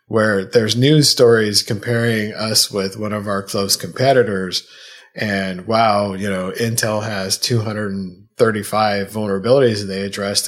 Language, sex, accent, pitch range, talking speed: English, male, American, 100-115 Hz, 125 wpm